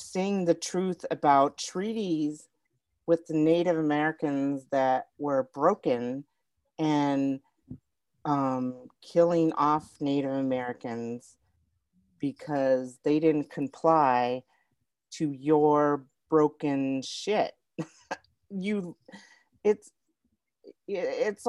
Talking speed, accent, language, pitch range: 80 wpm, American, English, 135-175 Hz